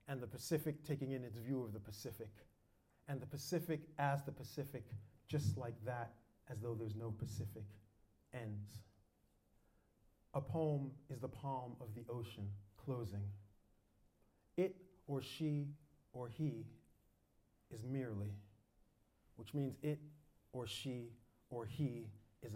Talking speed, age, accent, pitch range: 130 wpm, 30-49, American, 105-135 Hz